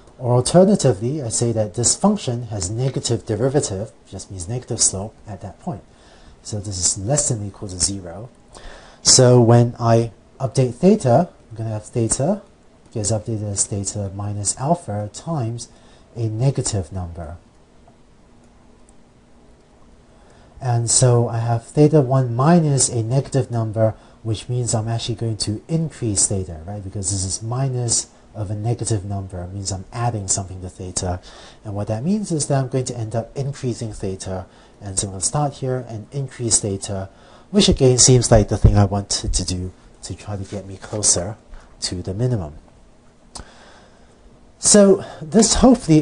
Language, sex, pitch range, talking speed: English, male, 100-130 Hz, 165 wpm